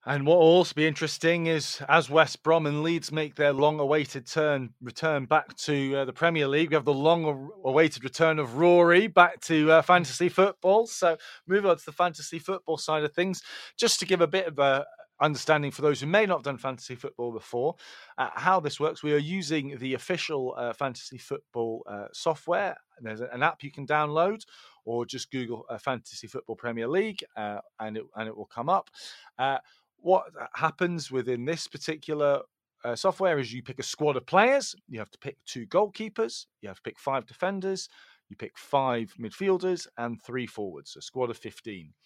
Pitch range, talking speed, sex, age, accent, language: 120-165 Hz, 200 wpm, male, 30-49, British, English